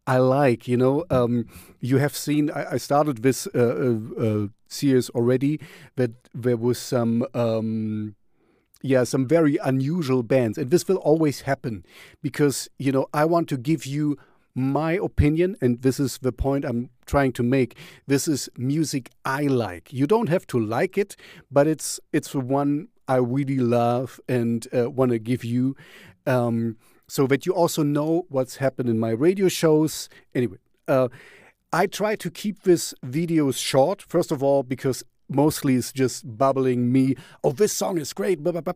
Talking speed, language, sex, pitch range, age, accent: 175 wpm, English, male, 125-150 Hz, 40-59, German